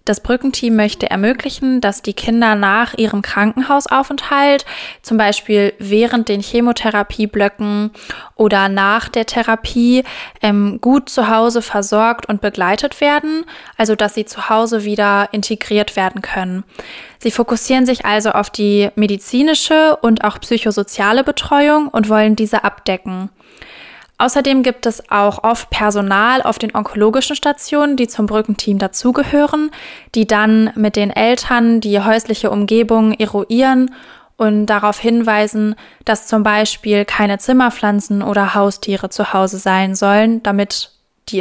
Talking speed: 130 wpm